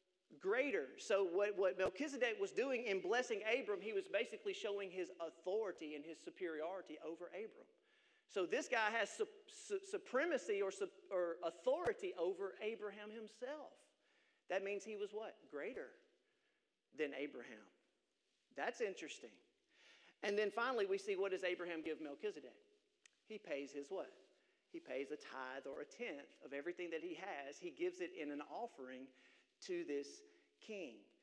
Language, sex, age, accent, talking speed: English, male, 40-59, American, 155 wpm